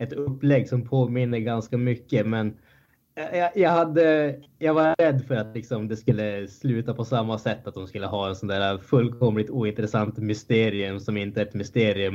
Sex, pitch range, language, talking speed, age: male, 105-130 Hz, Swedish, 185 wpm, 10-29